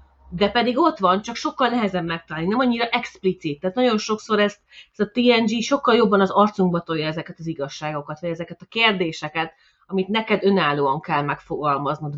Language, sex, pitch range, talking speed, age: Hungarian, female, 160-230 Hz, 175 wpm, 30-49